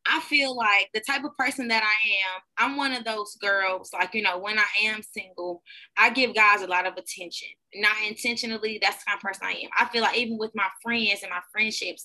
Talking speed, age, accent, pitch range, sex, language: 240 wpm, 20-39, American, 185-230 Hz, female, English